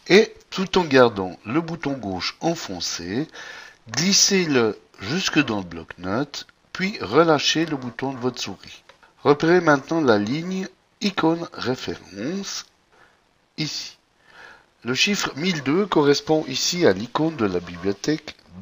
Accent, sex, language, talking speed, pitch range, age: French, male, French, 140 wpm, 105-170 Hz, 60-79